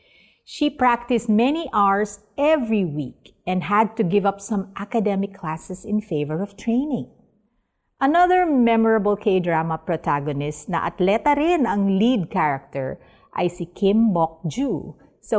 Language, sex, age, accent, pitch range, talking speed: Filipino, female, 50-69, native, 170-230 Hz, 135 wpm